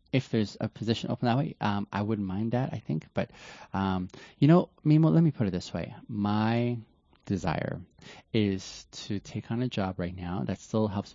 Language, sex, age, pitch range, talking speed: English, male, 20-39, 95-110 Hz, 205 wpm